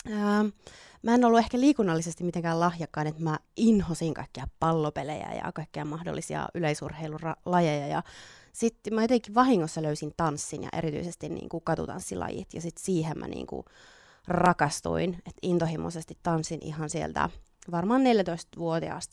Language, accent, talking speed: Finnish, native, 120 wpm